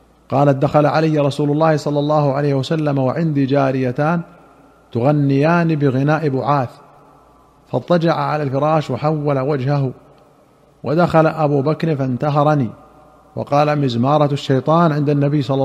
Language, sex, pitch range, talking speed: Arabic, male, 135-155 Hz, 110 wpm